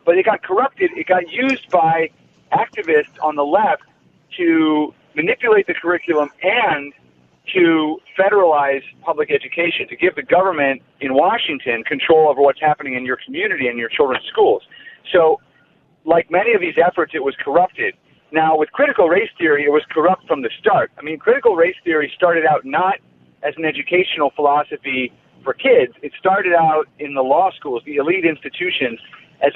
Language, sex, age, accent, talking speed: English, male, 40-59, American, 170 wpm